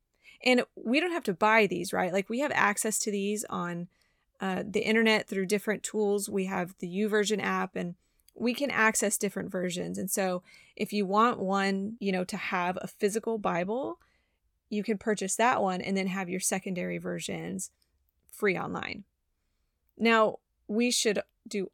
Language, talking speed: English, 170 wpm